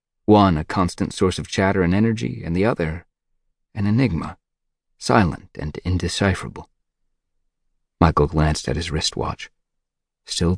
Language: English